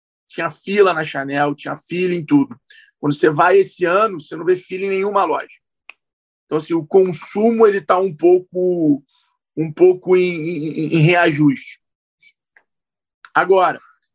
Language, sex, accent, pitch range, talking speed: Portuguese, male, Brazilian, 150-195 Hz, 145 wpm